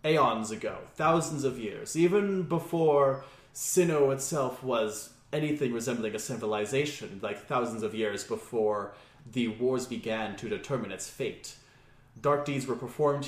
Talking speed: 135 wpm